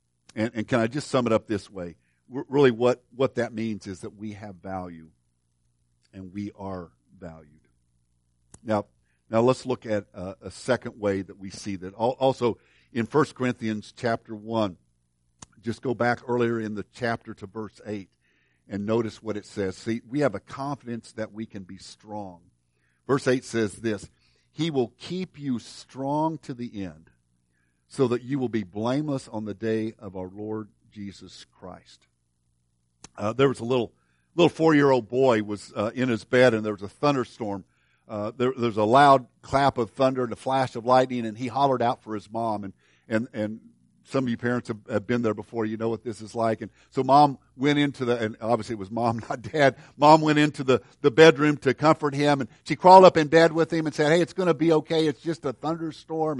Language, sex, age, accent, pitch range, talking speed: English, male, 50-69, American, 105-140 Hz, 205 wpm